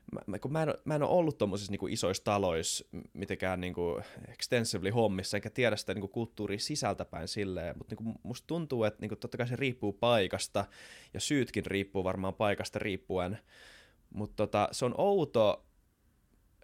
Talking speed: 170 wpm